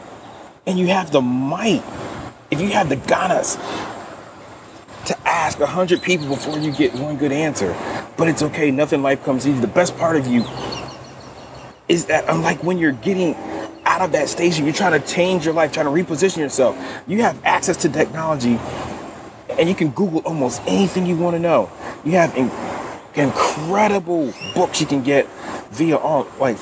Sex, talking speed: male, 180 wpm